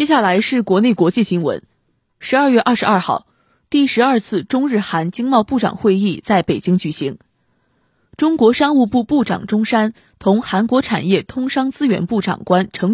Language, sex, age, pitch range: Chinese, female, 20-39, 180-260 Hz